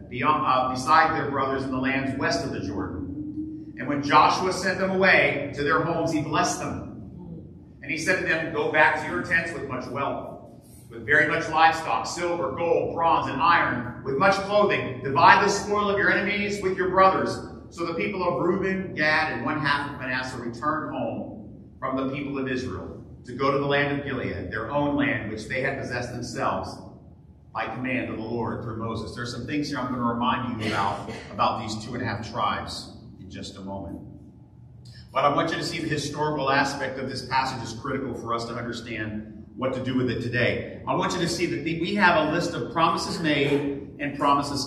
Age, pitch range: 50-69, 125-170 Hz